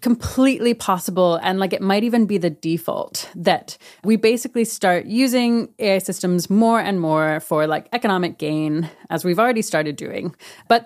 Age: 30-49